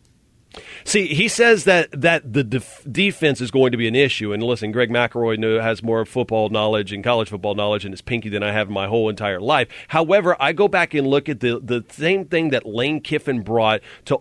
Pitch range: 125-170 Hz